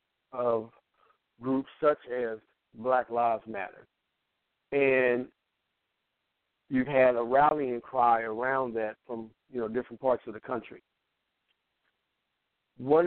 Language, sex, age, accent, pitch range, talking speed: English, male, 50-69, American, 115-135 Hz, 110 wpm